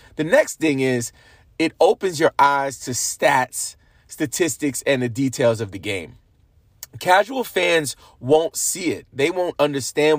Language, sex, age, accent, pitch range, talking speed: English, male, 30-49, American, 120-150 Hz, 145 wpm